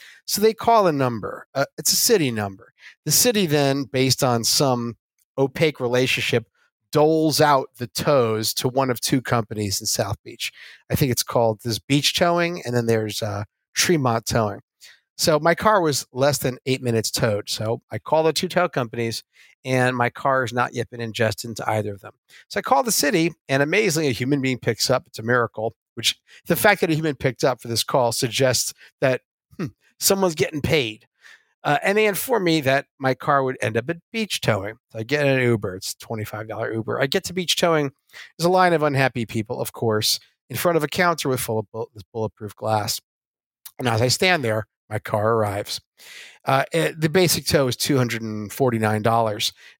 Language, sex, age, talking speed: English, male, 50-69, 200 wpm